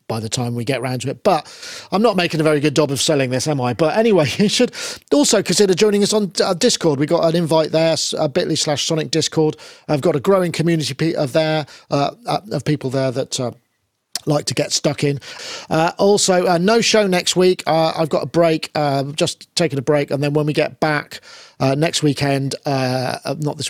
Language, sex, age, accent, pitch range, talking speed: English, male, 40-59, British, 135-175 Hz, 215 wpm